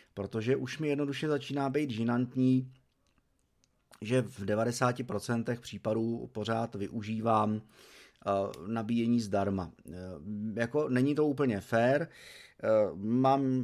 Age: 30-49